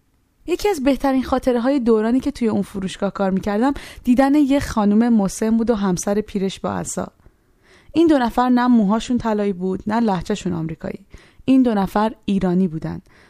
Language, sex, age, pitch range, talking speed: Persian, female, 20-39, 195-255 Hz, 165 wpm